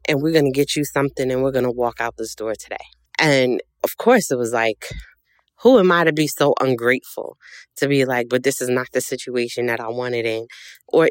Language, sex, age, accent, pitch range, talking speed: English, female, 20-39, American, 125-160 Hz, 220 wpm